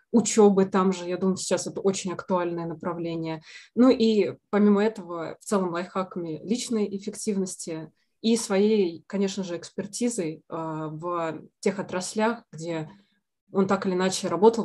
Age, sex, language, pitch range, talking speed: 20-39, female, Russian, 180-215 Hz, 135 wpm